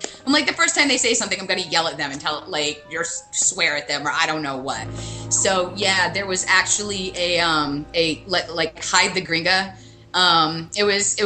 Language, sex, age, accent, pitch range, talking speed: English, female, 20-39, American, 155-190 Hz, 225 wpm